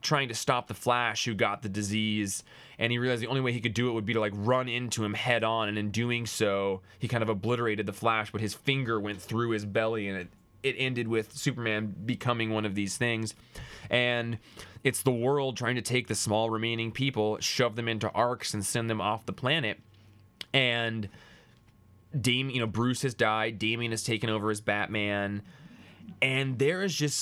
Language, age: English, 20-39